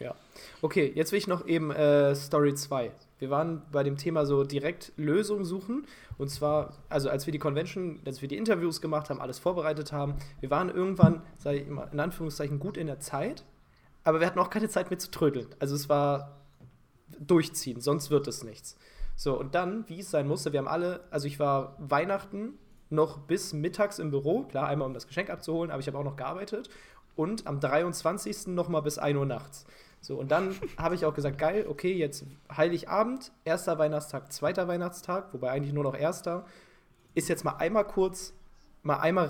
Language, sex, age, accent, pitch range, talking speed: German, male, 20-39, German, 145-175 Hz, 200 wpm